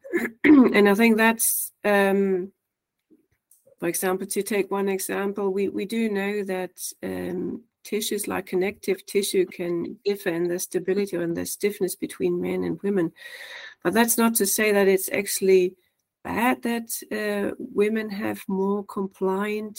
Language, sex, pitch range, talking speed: English, female, 190-225 Hz, 150 wpm